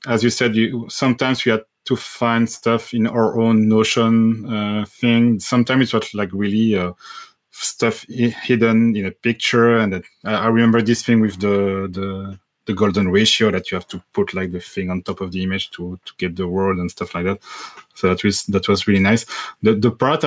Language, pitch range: English, 105-120 Hz